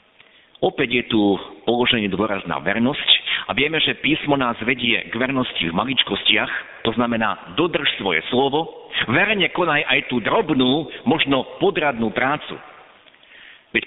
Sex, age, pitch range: male, 50-69, 110-150 Hz